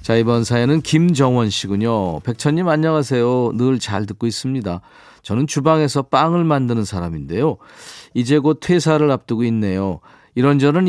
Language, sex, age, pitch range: Korean, male, 40-59, 110-150 Hz